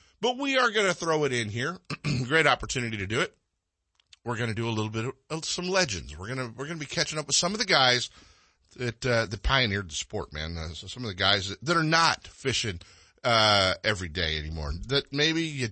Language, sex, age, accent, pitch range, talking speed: English, male, 50-69, American, 100-135 Hz, 245 wpm